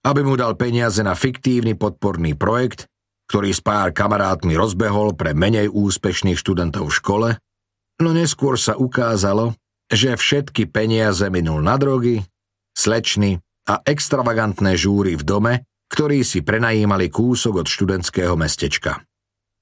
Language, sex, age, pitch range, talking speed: Slovak, male, 40-59, 95-115 Hz, 130 wpm